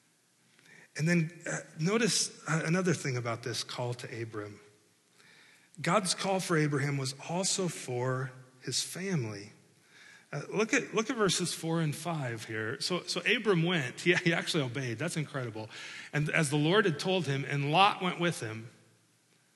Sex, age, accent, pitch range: male, 40-59, American, 135-190 Hz